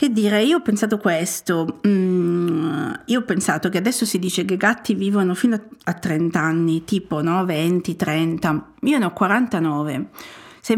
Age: 50-69